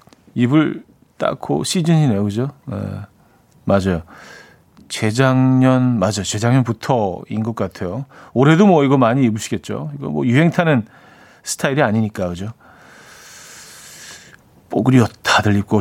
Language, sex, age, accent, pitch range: Korean, male, 40-59, native, 110-150 Hz